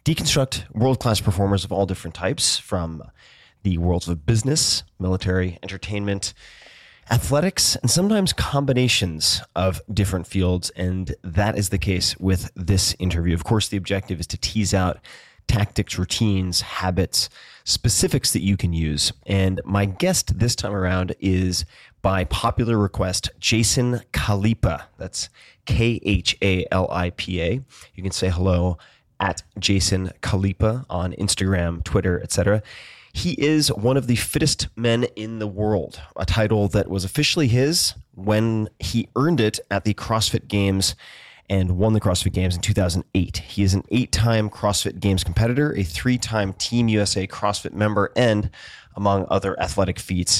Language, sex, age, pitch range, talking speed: English, male, 30-49, 90-110 Hz, 140 wpm